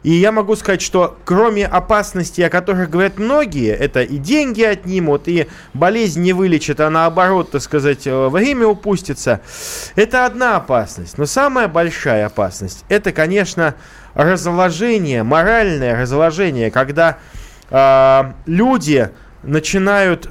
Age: 20-39